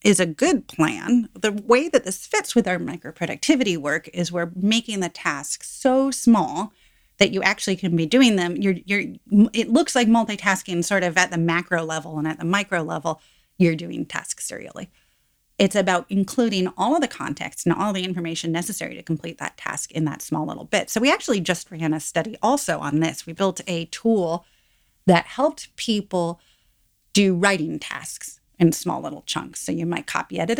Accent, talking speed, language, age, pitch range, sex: American, 195 wpm, English, 30-49, 165-215 Hz, female